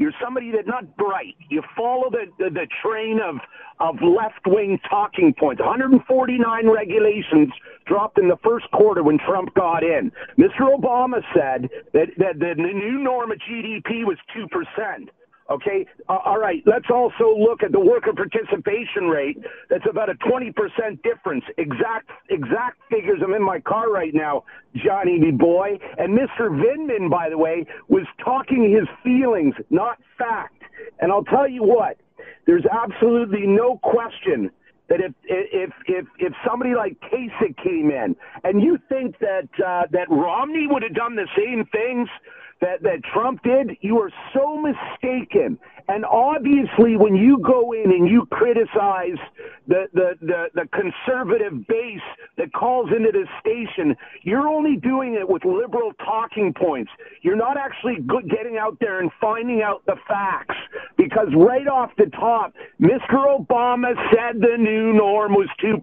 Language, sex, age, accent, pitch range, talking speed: English, male, 50-69, American, 210-310 Hz, 155 wpm